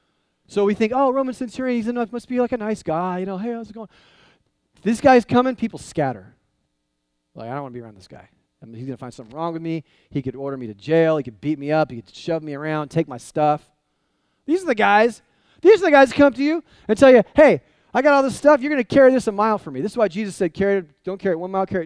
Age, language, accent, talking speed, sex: 30-49, English, American, 290 wpm, male